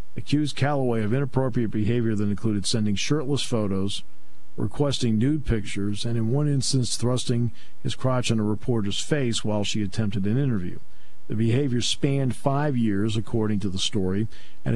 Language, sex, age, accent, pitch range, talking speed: English, male, 50-69, American, 105-125 Hz, 160 wpm